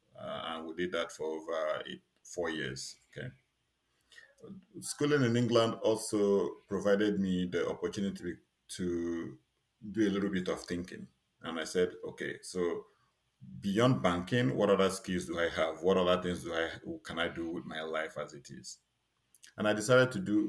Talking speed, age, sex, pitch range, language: 175 wpm, 50-69, male, 85-105 Hz, English